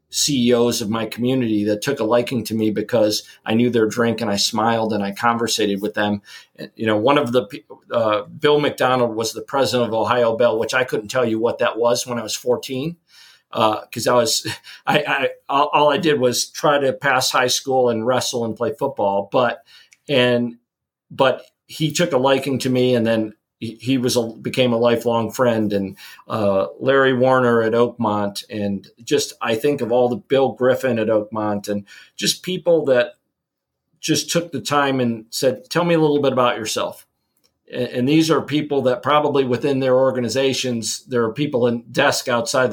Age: 40-59